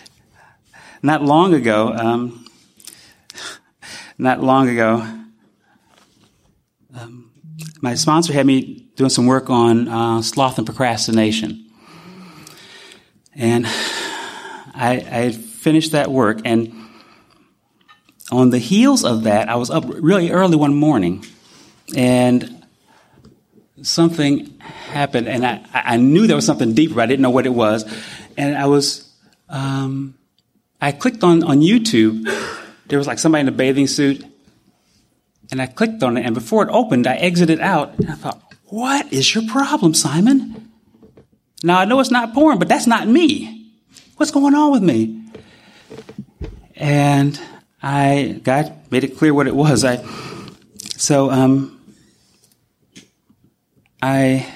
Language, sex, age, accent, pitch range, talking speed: English, male, 30-49, American, 120-165 Hz, 135 wpm